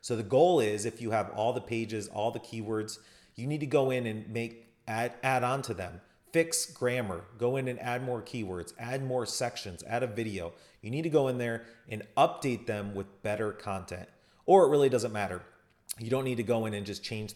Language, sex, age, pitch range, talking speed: English, male, 30-49, 100-130 Hz, 220 wpm